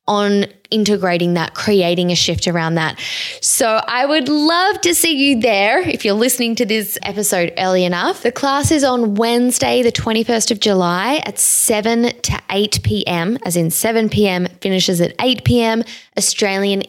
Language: English